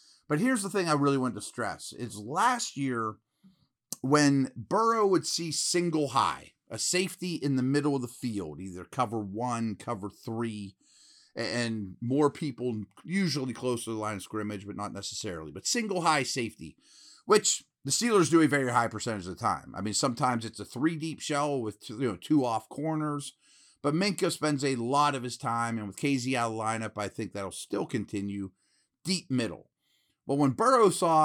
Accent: American